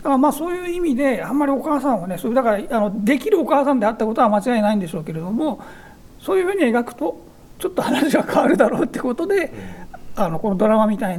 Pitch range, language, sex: 195-275 Hz, Japanese, male